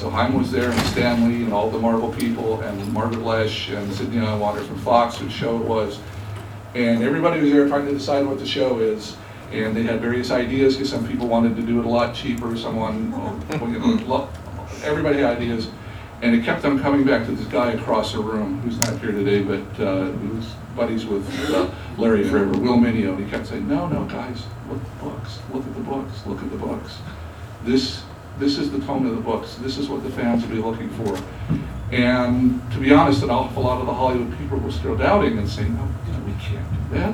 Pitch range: 105-125 Hz